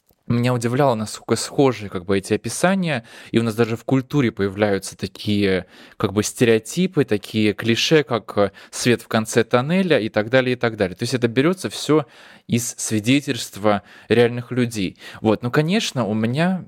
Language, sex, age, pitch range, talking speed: Russian, male, 20-39, 105-135 Hz, 165 wpm